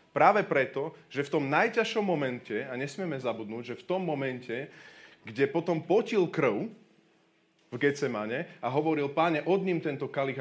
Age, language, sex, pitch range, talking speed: 30-49, Slovak, male, 125-180 Hz, 155 wpm